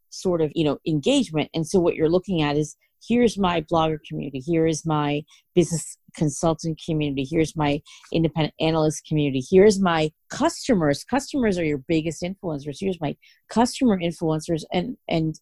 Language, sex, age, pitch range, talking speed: English, female, 40-59, 150-180 Hz, 160 wpm